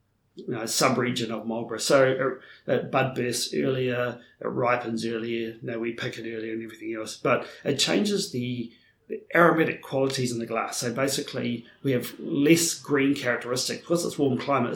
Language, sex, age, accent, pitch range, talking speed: English, male, 40-59, Australian, 115-140 Hz, 175 wpm